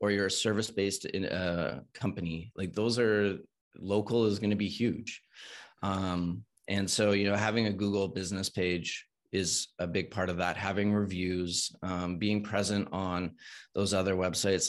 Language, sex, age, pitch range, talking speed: English, male, 30-49, 90-100 Hz, 170 wpm